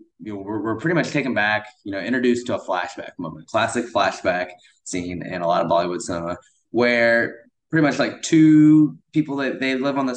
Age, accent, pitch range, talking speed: 20-39, American, 100-130 Hz, 210 wpm